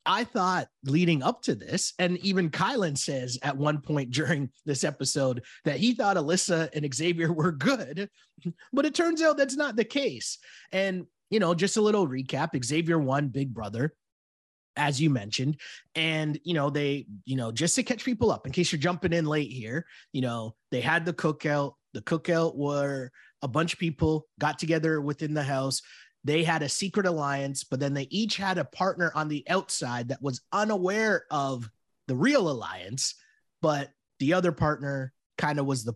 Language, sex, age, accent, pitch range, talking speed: English, male, 30-49, American, 135-175 Hz, 185 wpm